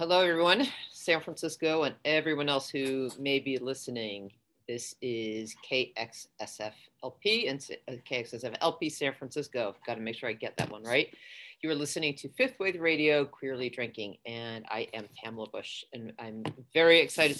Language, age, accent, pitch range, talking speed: English, 40-59, American, 120-155 Hz, 160 wpm